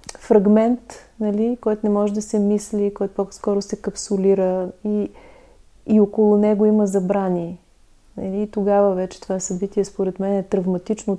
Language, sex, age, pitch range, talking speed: Bulgarian, female, 30-49, 180-210 Hz, 150 wpm